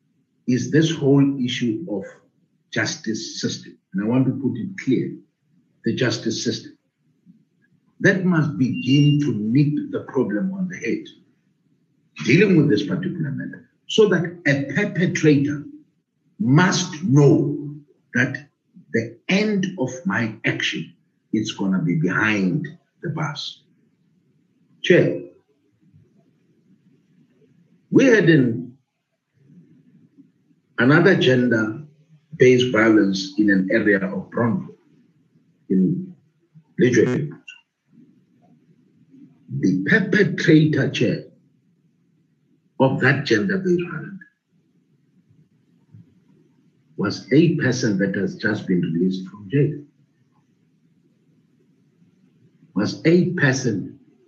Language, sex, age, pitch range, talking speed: English, male, 60-79, 125-175 Hz, 95 wpm